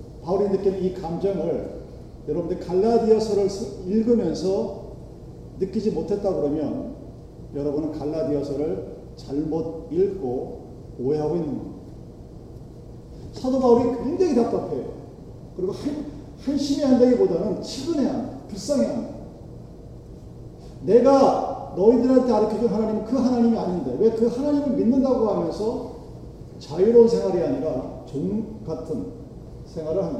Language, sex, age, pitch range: Korean, male, 40-59, 185-235 Hz